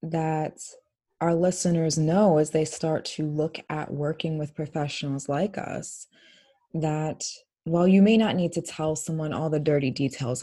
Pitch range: 145-170 Hz